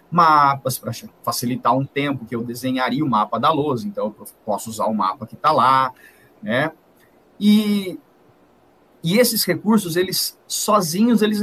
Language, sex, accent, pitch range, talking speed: Portuguese, male, Brazilian, 125-175 Hz, 150 wpm